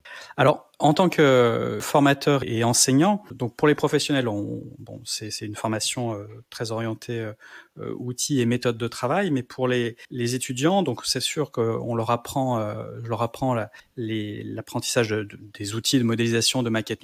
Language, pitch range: French, 115-140 Hz